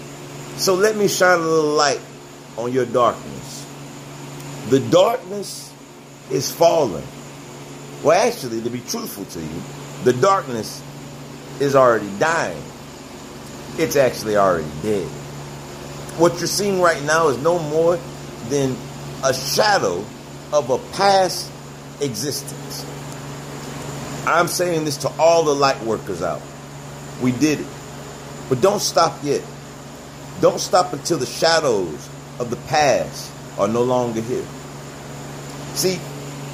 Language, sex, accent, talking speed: English, male, American, 120 wpm